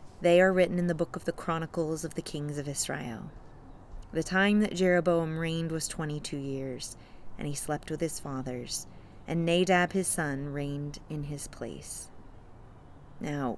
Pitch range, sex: 145-170 Hz, female